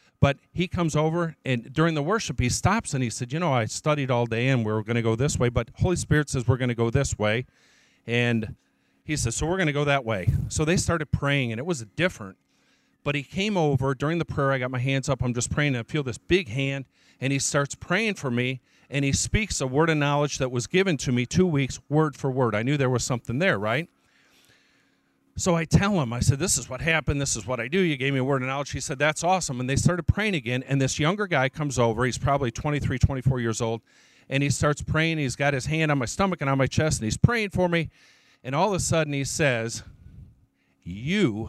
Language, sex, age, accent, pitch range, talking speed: English, male, 40-59, American, 120-155 Hz, 255 wpm